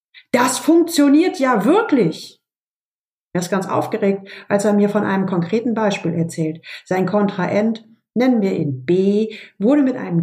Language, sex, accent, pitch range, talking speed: German, female, German, 175-230 Hz, 145 wpm